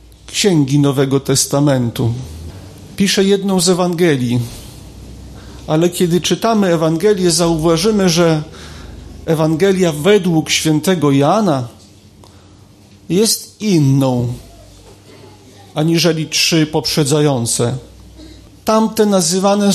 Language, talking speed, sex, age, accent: Polish, 75 wpm, male, 40-59, native